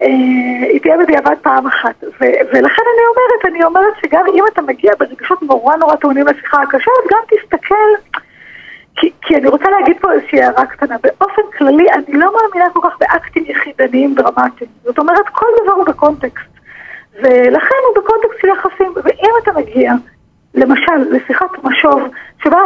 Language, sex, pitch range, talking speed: Hebrew, female, 280-385 Hz, 155 wpm